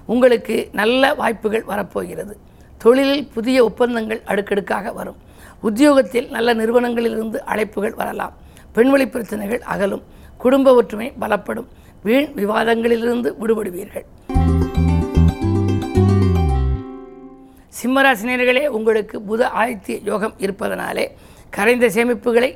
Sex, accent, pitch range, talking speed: female, native, 205-240 Hz, 80 wpm